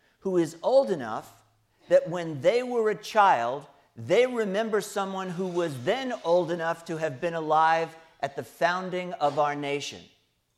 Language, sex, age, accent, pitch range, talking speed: English, male, 50-69, American, 135-185 Hz, 160 wpm